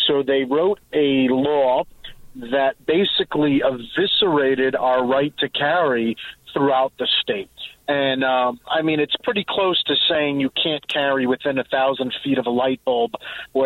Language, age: English, 40-59